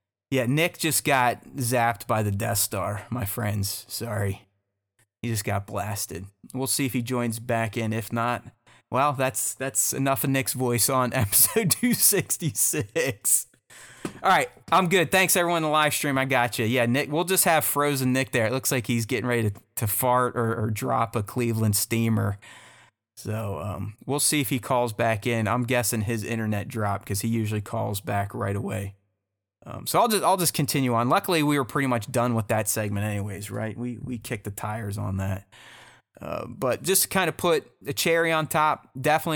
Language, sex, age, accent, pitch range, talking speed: English, male, 30-49, American, 110-135 Hz, 200 wpm